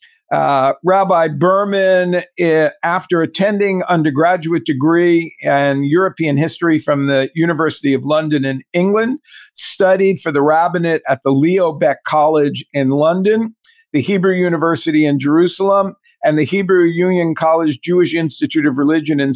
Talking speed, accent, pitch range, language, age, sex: 135 wpm, American, 150-190 Hz, English, 50-69, male